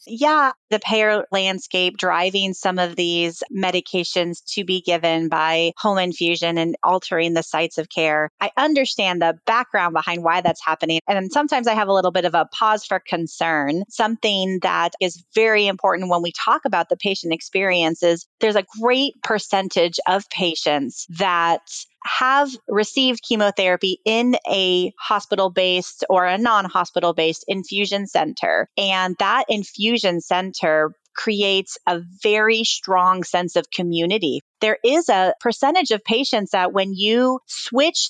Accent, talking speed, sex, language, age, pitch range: American, 145 wpm, female, English, 30-49, 170-210 Hz